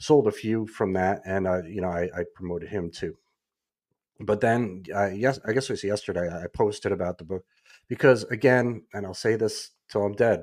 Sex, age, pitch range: male, 40-59, 90-125 Hz